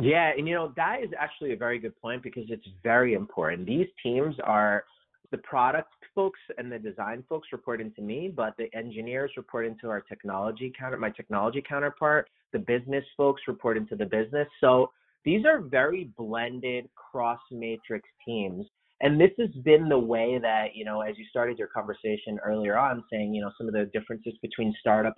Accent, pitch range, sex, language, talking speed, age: American, 110-145 Hz, male, English, 190 wpm, 30-49